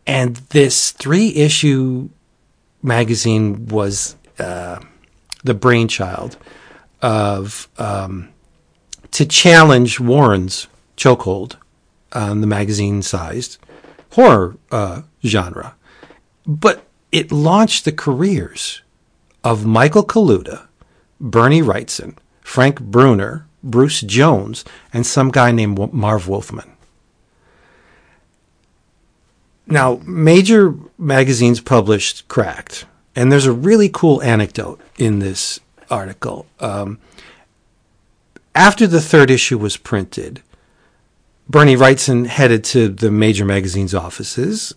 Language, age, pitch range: English, 50-69, 105-145 Hz